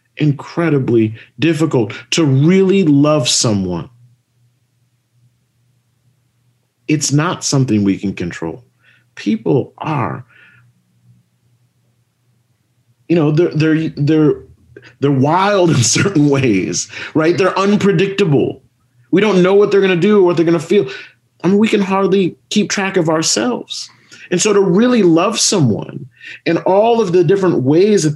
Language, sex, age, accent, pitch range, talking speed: English, male, 40-59, American, 125-180 Hz, 130 wpm